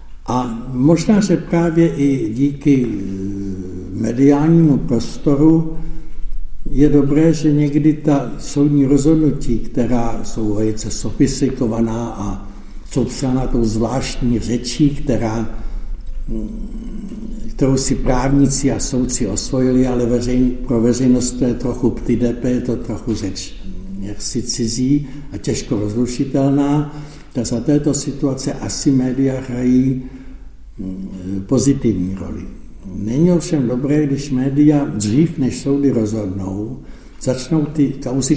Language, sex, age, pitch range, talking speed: Czech, male, 60-79, 115-140 Hz, 105 wpm